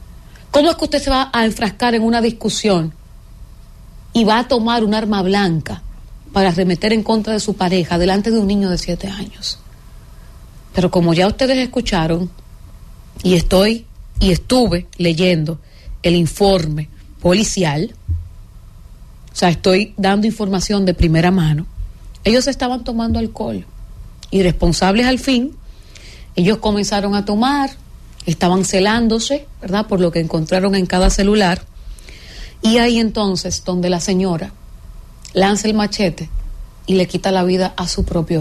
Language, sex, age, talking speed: English, female, 40-59, 145 wpm